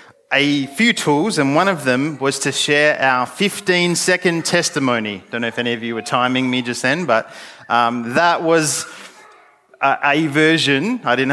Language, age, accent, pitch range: English, 30-49, Australian, 125-165 Hz